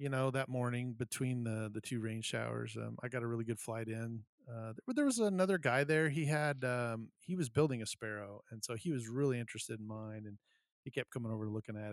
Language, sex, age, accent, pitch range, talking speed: English, male, 40-59, American, 105-125 Hz, 235 wpm